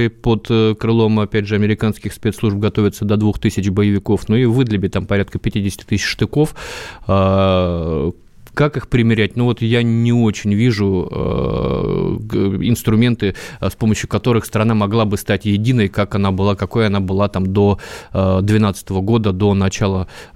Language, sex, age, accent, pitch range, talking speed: Russian, male, 20-39, native, 95-115 Hz, 140 wpm